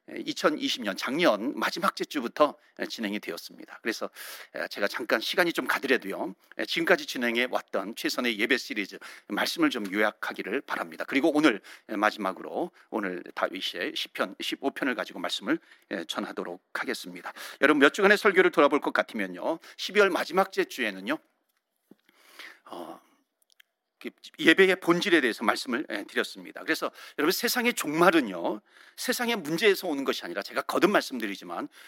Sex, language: male, Korean